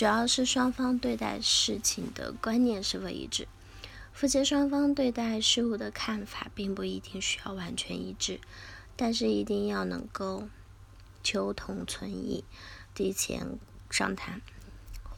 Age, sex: 20-39, female